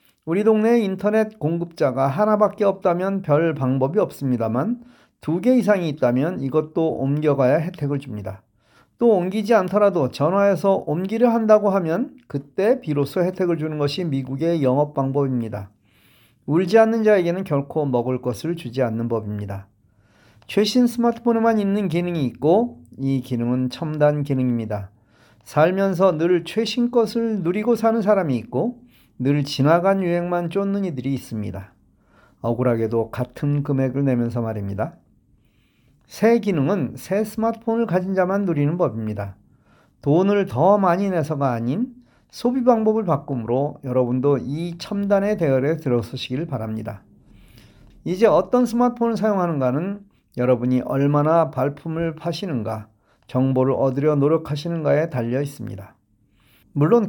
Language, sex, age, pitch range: Korean, male, 40-59, 120-185 Hz